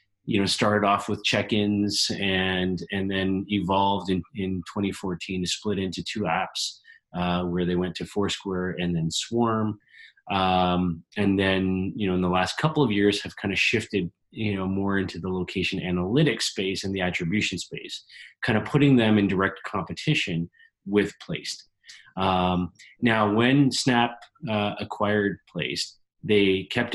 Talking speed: 165 wpm